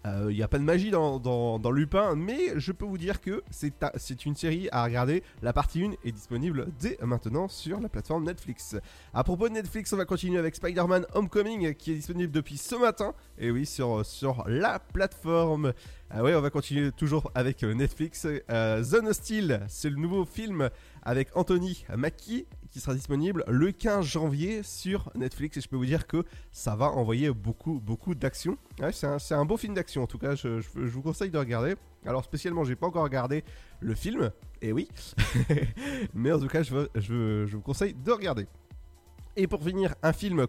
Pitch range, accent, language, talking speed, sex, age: 125-180 Hz, French, French, 205 wpm, male, 20-39